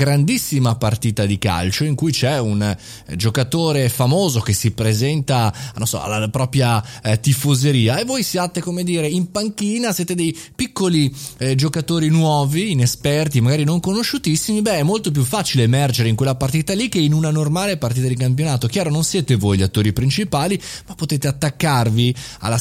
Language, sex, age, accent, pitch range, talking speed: Italian, male, 20-39, native, 115-160 Hz, 165 wpm